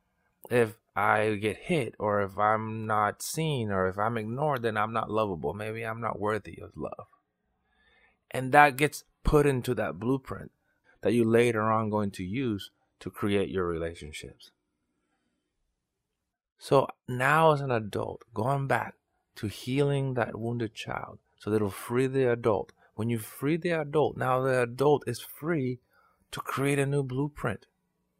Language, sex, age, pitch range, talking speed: English, male, 30-49, 100-140 Hz, 155 wpm